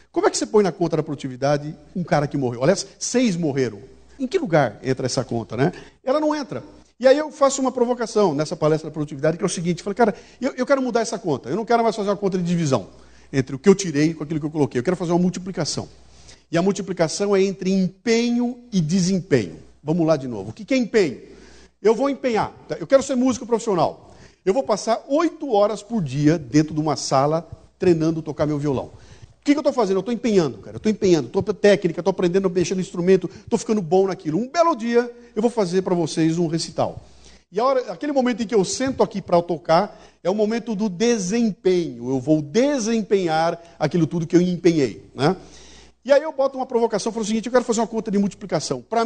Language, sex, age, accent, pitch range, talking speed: Portuguese, male, 50-69, Brazilian, 160-235 Hz, 230 wpm